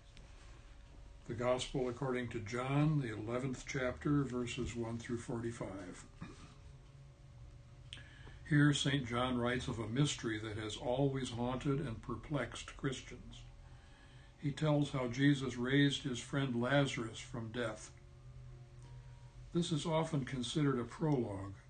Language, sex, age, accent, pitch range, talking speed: English, male, 60-79, American, 115-140 Hz, 115 wpm